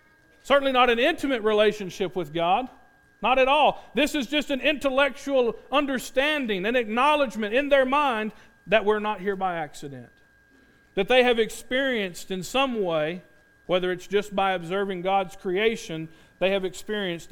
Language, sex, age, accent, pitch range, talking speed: English, male, 40-59, American, 160-220 Hz, 150 wpm